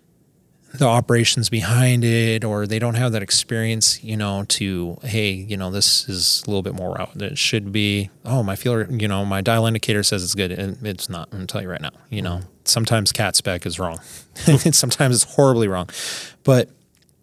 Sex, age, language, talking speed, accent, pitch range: male, 20-39, English, 205 wpm, American, 95-120 Hz